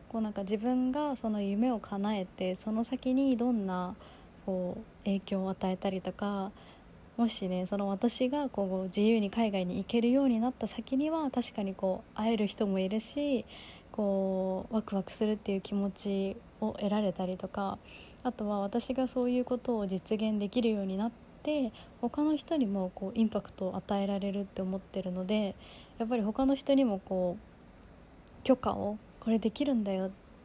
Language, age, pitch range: Japanese, 20-39, 195-240 Hz